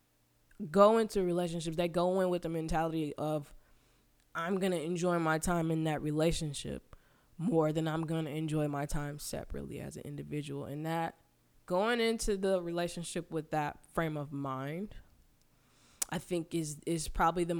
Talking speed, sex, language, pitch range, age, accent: 165 wpm, female, English, 150-200 Hz, 10-29, American